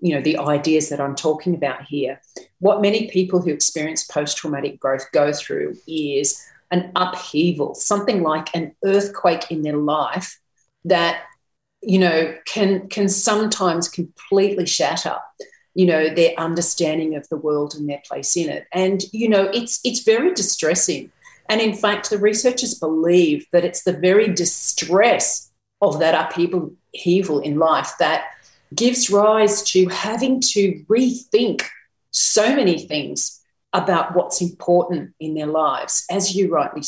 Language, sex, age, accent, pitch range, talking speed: English, female, 40-59, Australian, 155-205 Hz, 150 wpm